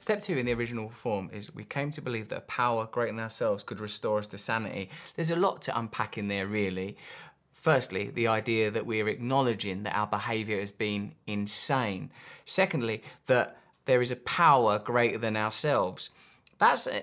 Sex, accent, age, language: male, British, 20-39, English